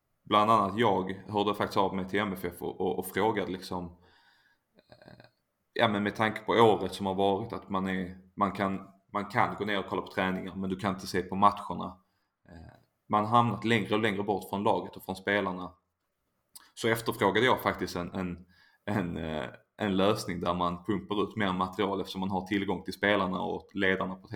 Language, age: Swedish, 20-39